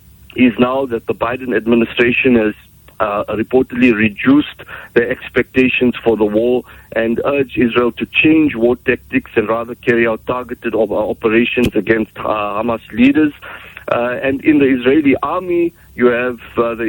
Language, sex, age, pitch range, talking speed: English, male, 50-69, 110-125 Hz, 150 wpm